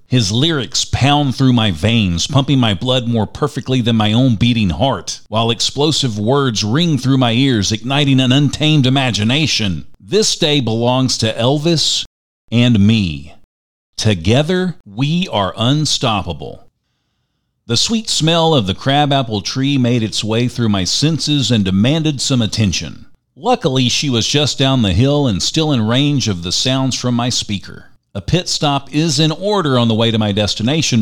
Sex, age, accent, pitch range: male, 40-59, American, 110-140 Hz